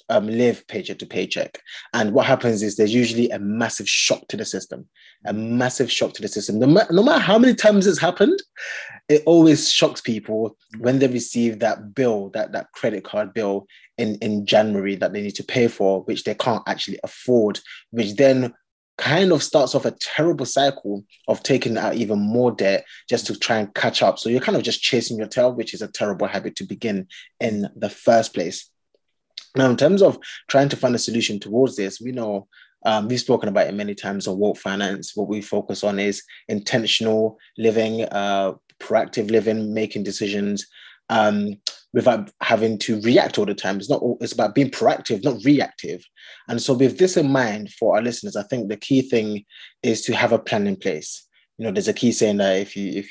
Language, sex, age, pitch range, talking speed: English, male, 20-39, 100-125 Hz, 205 wpm